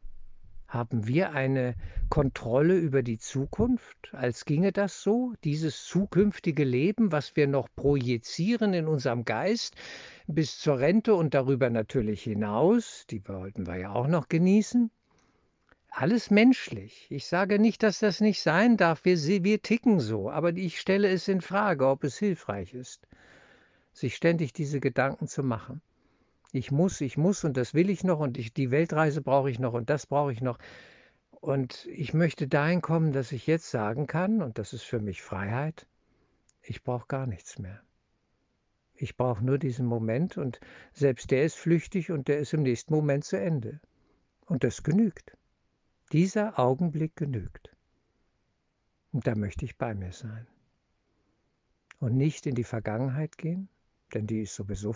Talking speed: 160 wpm